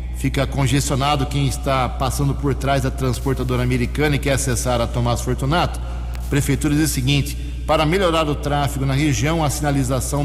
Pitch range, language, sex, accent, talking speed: 125-150 Hz, Portuguese, male, Brazilian, 165 wpm